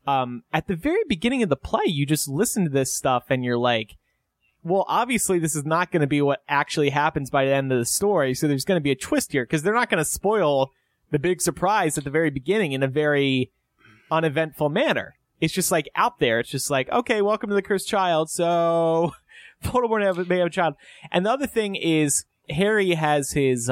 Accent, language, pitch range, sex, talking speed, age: American, English, 125-175 Hz, male, 225 wpm, 30-49